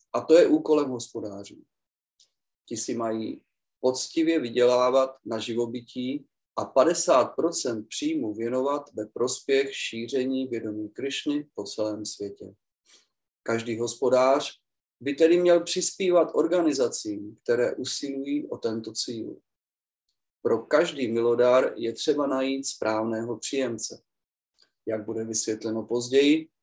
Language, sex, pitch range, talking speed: Czech, male, 110-145 Hz, 110 wpm